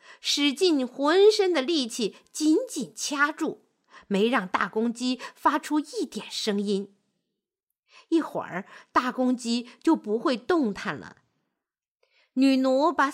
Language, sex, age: Chinese, female, 50-69